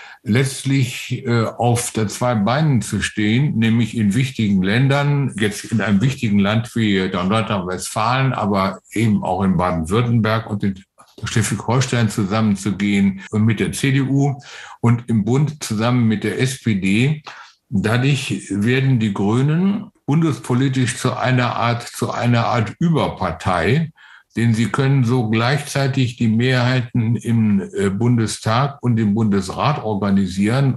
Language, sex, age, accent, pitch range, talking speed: German, male, 60-79, German, 105-130 Hz, 125 wpm